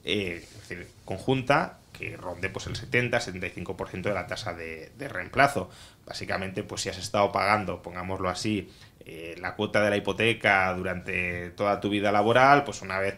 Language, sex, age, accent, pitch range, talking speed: Spanish, male, 20-39, Spanish, 95-120 Hz, 170 wpm